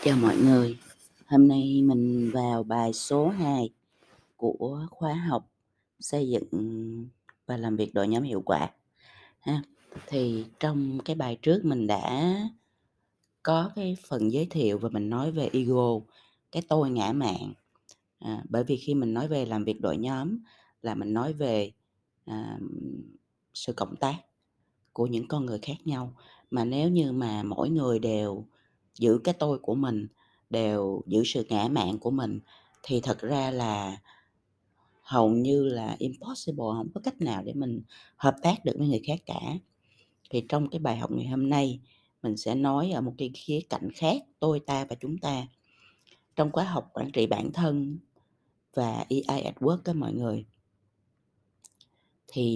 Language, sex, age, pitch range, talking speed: Vietnamese, female, 20-39, 115-150 Hz, 165 wpm